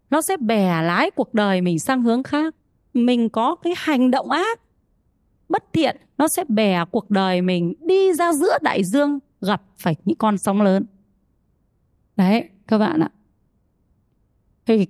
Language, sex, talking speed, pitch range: Vietnamese, female, 160 wpm, 200-315 Hz